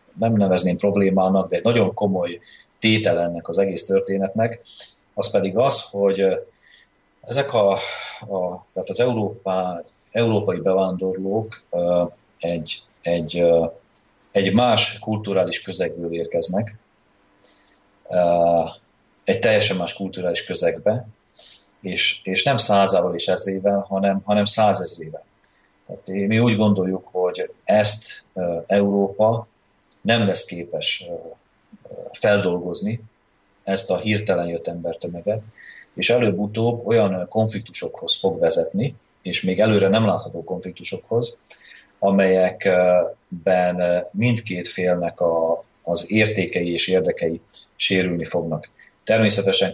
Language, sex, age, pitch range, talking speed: Slovak, male, 30-49, 90-105 Hz, 100 wpm